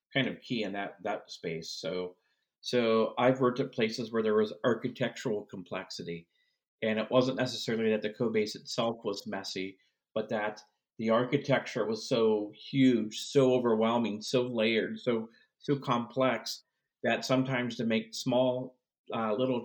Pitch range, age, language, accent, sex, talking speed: 105-125 Hz, 50-69, English, American, male, 155 wpm